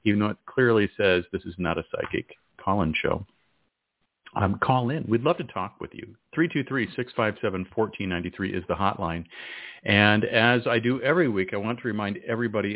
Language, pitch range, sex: English, 90-115 Hz, male